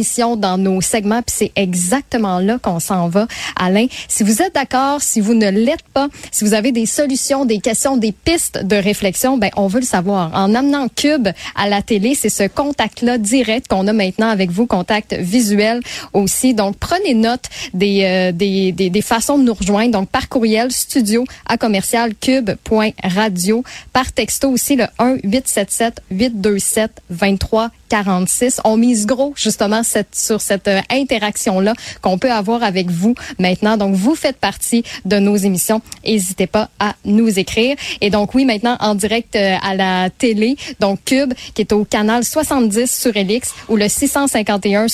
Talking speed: 175 wpm